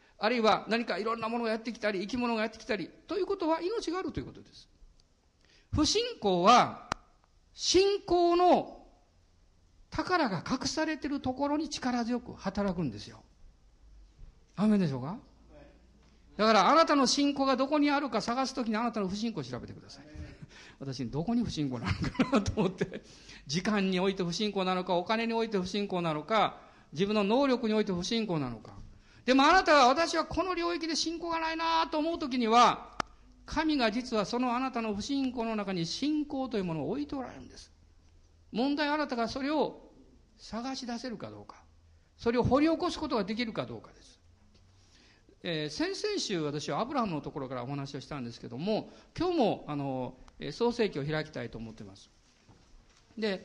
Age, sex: 50-69, male